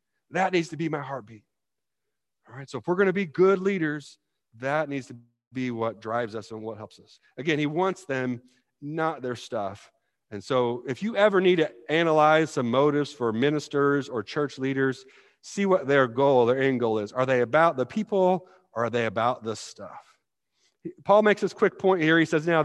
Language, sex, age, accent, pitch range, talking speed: English, male, 40-59, American, 135-200 Hz, 205 wpm